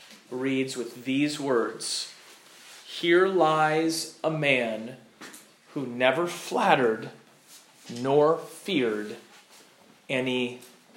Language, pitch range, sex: English, 125-175 Hz, male